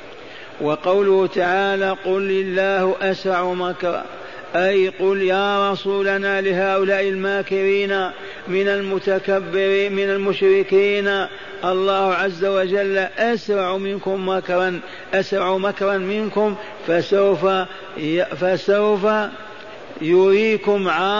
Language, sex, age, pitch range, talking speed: Arabic, male, 50-69, 185-195 Hz, 80 wpm